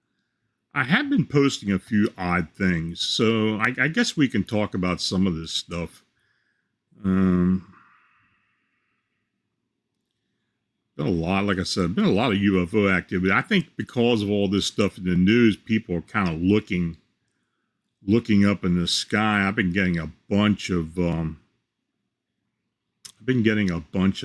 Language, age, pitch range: English, 40-59, 95-120 Hz